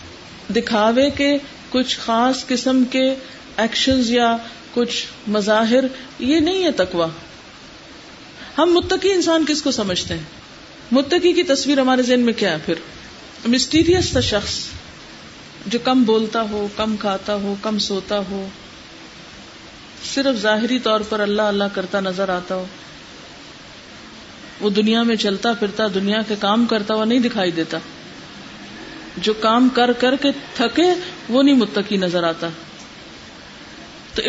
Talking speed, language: 135 wpm, Urdu